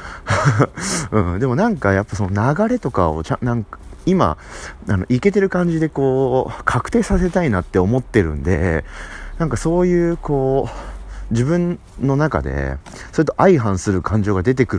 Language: Japanese